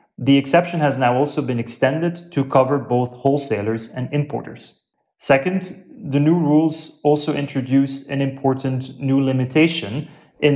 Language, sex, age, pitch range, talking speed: English, male, 30-49, 125-150 Hz, 135 wpm